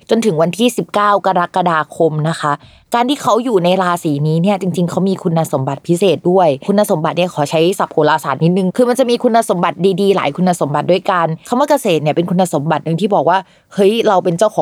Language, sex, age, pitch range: Thai, female, 20-39, 165-210 Hz